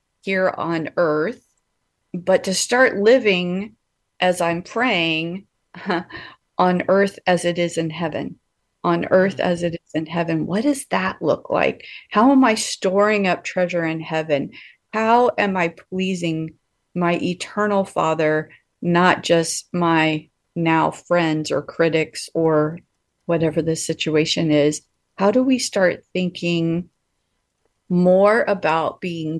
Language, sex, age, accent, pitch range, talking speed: English, female, 30-49, American, 160-200 Hz, 130 wpm